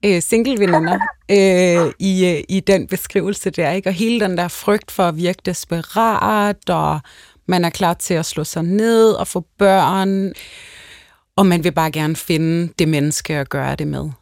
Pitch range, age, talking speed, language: 165-215 Hz, 30-49, 175 wpm, Danish